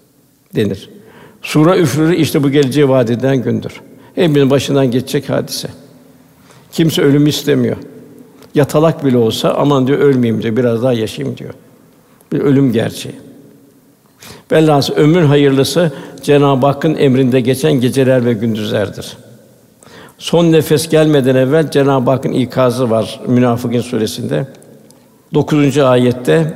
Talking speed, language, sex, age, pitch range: 115 wpm, Turkish, male, 60-79, 125-150 Hz